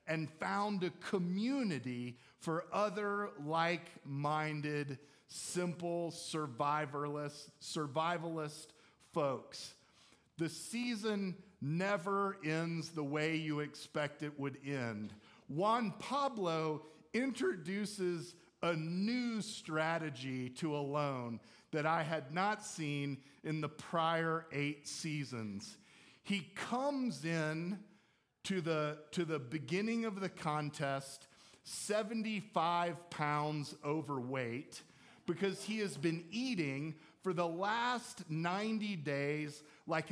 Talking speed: 95 wpm